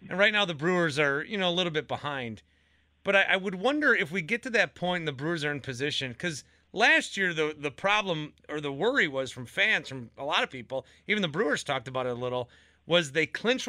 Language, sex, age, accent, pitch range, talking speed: English, male, 30-49, American, 130-195 Hz, 250 wpm